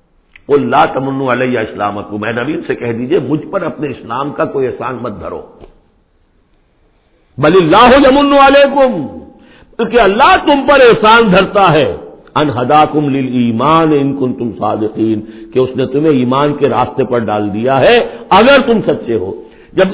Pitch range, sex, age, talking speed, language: 140-235 Hz, male, 60-79, 105 wpm, English